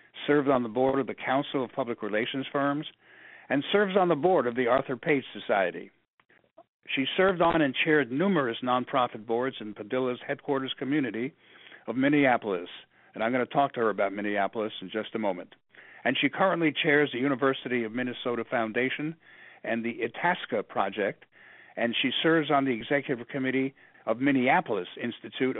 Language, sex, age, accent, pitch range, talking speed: English, male, 60-79, American, 120-145 Hz, 165 wpm